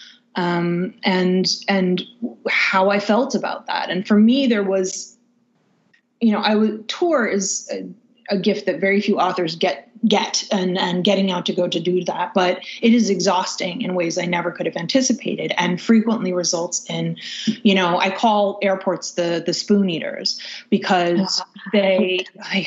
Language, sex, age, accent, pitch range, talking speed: English, female, 20-39, American, 180-230 Hz, 170 wpm